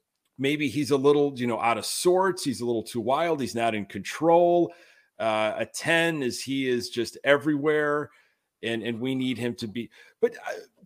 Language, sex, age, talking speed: English, male, 40-59, 195 wpm